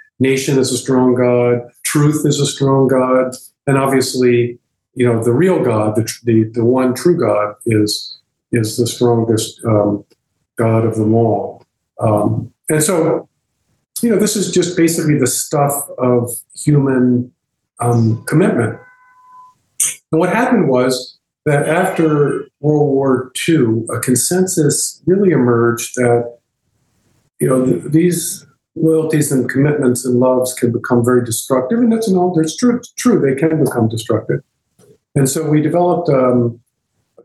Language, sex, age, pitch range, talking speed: English, male, 50-69, 115-145 Hz, 150 wpm